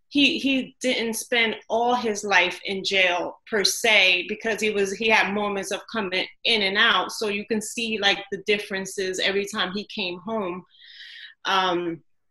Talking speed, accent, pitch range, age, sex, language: 170 wpm, American, 200-245 Hz, 30-49, female, English